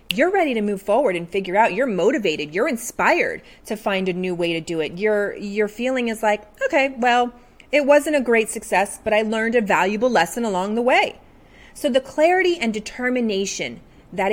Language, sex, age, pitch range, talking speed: English, female, 30-49, 190-250 Hz, 195 wpm